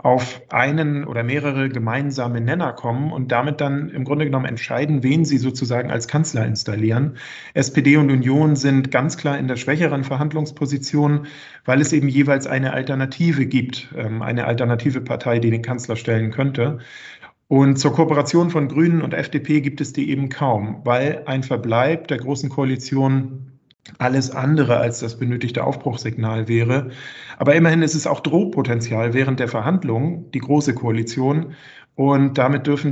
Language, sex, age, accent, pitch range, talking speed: German, male, 40-59, German, 120-145 Hz, 155 wpm